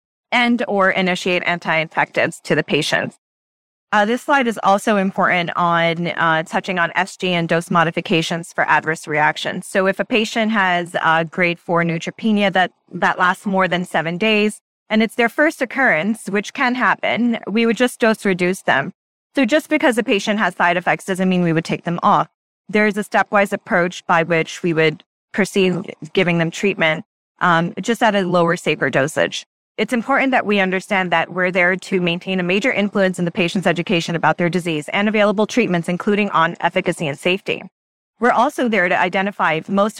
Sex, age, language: female, 20-39, English